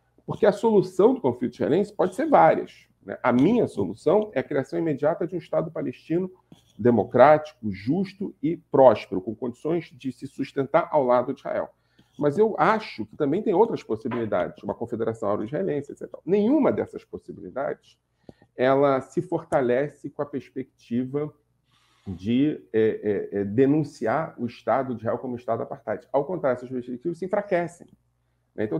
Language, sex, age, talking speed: Portuguese, male, 40-59, 155 wpm